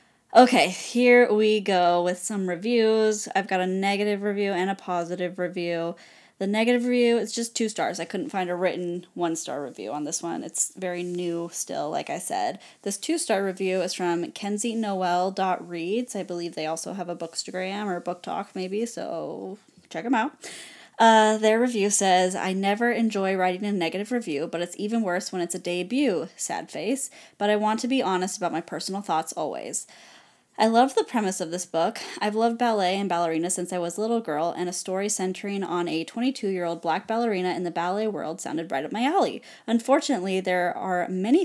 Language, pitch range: English, 175-215 Hz